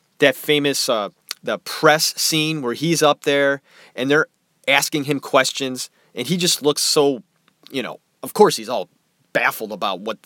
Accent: American